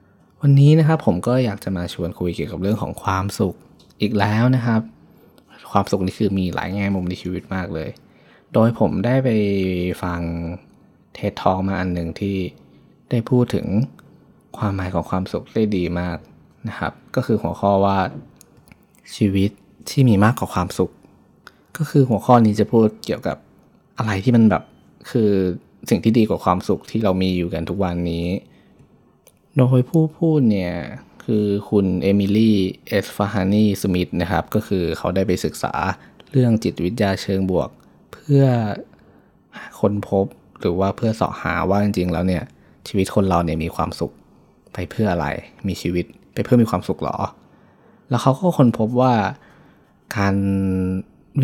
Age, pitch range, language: 20-39, 90-110 Hz, Thai